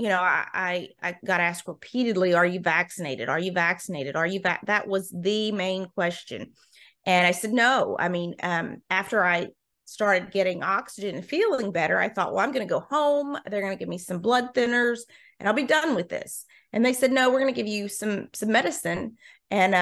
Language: English